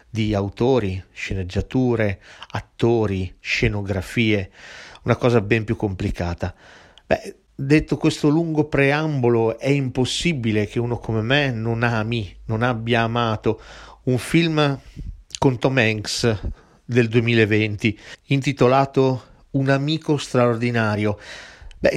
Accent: native